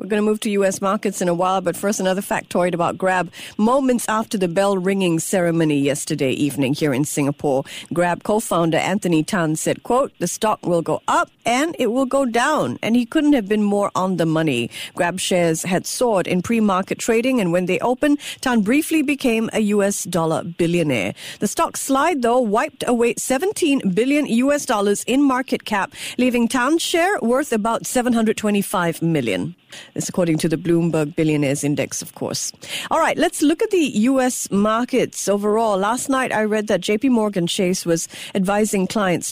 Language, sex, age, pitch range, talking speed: English, female, 50-69, 180-245 Hz, 180 wpm